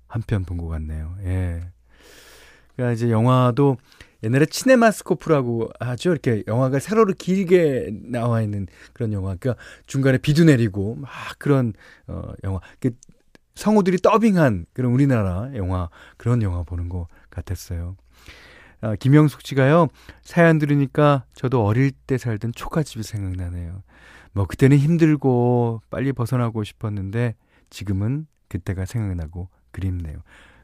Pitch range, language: 90-135 Hz, Korean